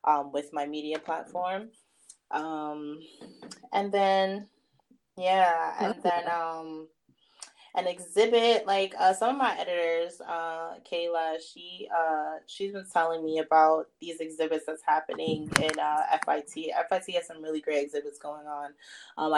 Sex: female